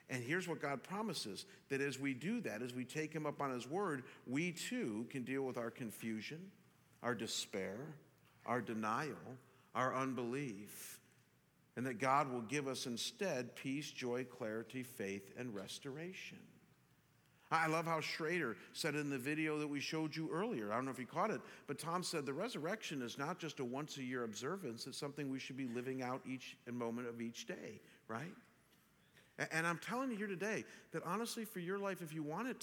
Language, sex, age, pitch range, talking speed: English, male, 50-69, 130-170 Hz, 190 wpm